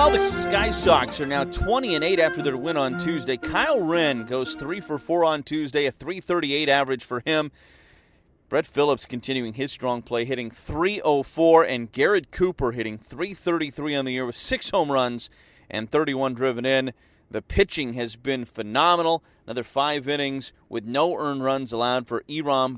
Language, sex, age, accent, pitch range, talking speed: English, male, 30-49, American, 115-150 Hz, 175 wpm